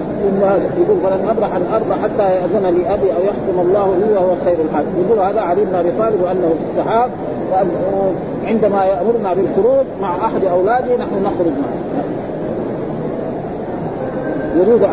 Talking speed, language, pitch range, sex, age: 135 wpm, Arabic, 185-225 Hz, male, 40-59